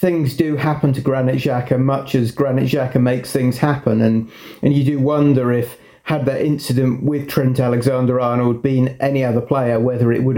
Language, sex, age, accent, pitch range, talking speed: English, male, 30-49, British, 120-140 Hz, 185 wpm